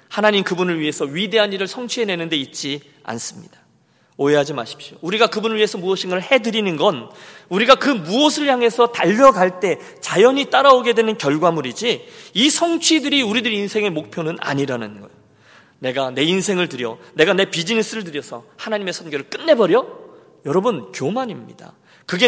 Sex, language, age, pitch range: male, Korean, 40-59, 155-245 Hz